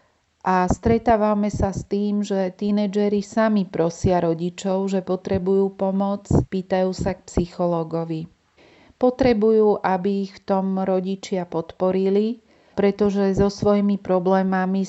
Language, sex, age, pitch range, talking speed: Slovak, female, 40-59, 175-200 Hz, 115 wpm